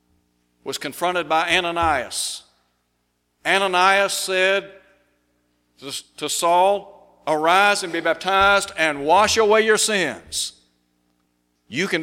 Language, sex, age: English, male, 60-79